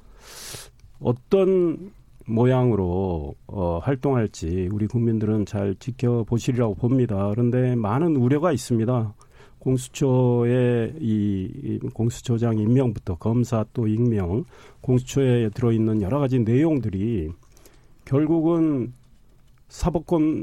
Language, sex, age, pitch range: Korean, male, 40-59, 110-140 Hz